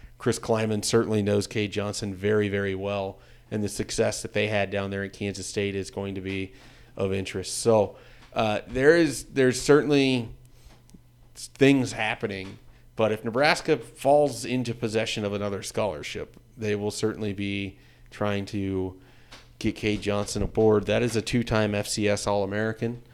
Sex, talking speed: male, 150 wpm